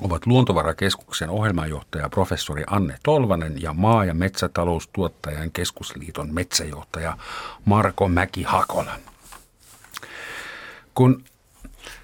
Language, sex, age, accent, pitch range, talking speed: Finnish, male, 50-69, native, 90-115 Hz, 80 wpm